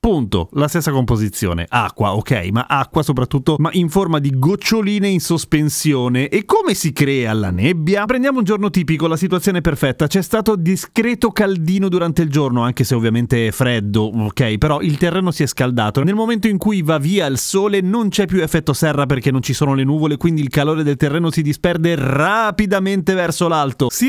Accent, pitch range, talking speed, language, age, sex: native, 125-190 Hz, 195 wpm, Italian, 30-49, male